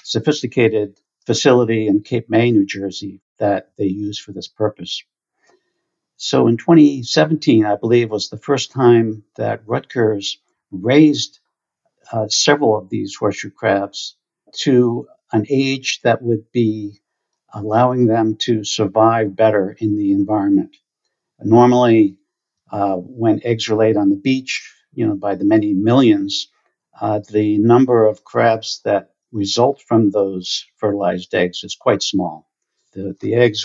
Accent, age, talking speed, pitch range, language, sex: American, 60-79, 135 wpm, 105-125 Hz, English, male